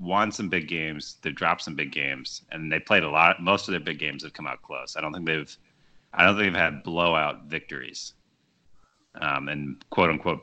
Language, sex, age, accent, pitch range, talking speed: English, male, 30-49, American, 80-100 Hz, 220 wpm